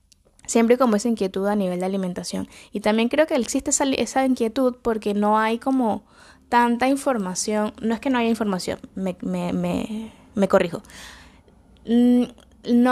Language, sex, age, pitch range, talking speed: Spanish, female, 10-29, 195-235 Hz, 145 wpm